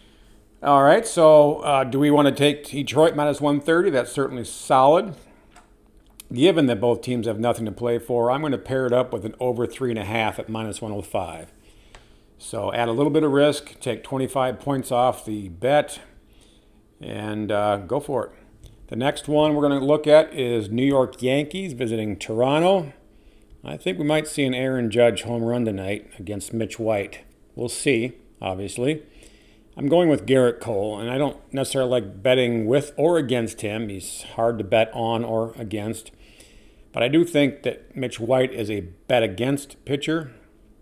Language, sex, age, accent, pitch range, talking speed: English, male, 50-69, American, 110-135 Hz, 175 wpm